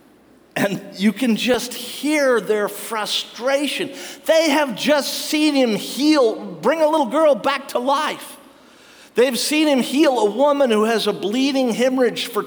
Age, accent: 50-69, American